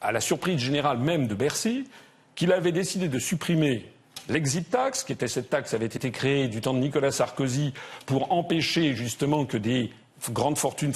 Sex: male